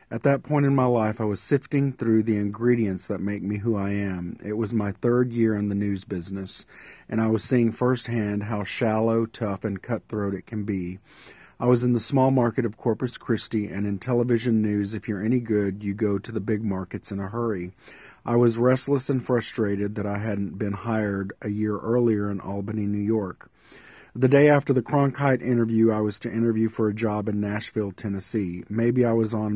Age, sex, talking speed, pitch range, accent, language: 40-59, male, 210 wpm, 100-120 Hz, American, English